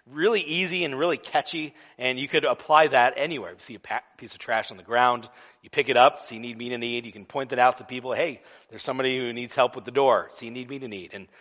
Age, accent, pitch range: 40-59, American, 120-155 Hz